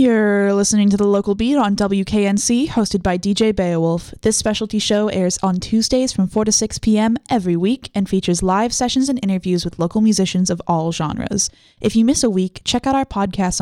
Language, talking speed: English, 205 wpm